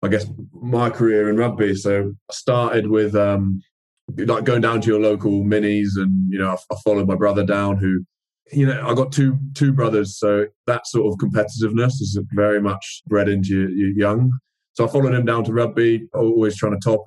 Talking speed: 205 wpm